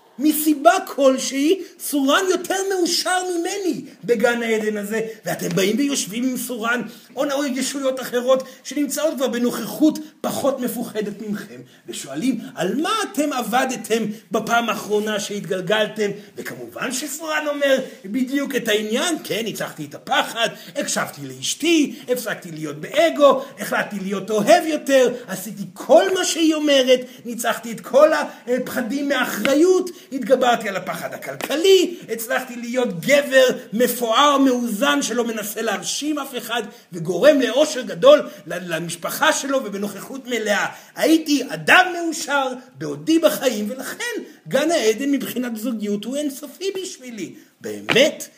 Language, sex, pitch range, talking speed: Hebrew, male, 225-295 Hz, 120 wpm